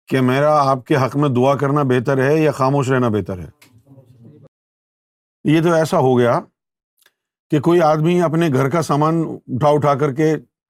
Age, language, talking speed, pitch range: 50-69, Urdu, 175 wpm, 125-160 Hz